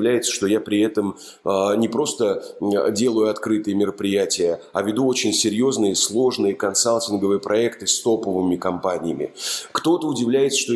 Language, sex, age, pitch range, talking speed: Russian, male, 30-49, 110-145 Hz, 125 wpm